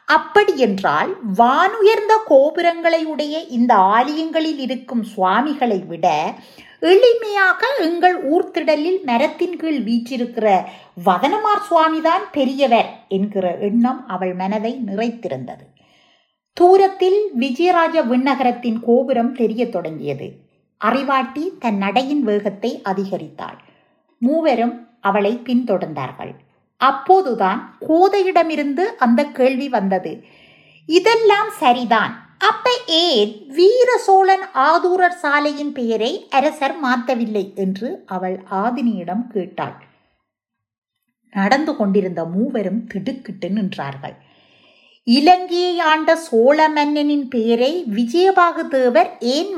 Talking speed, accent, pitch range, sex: 80 wpm, native, 210-330 Hz, female